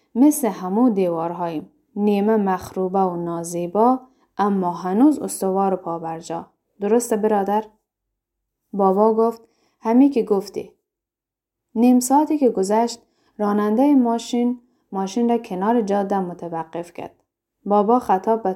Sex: female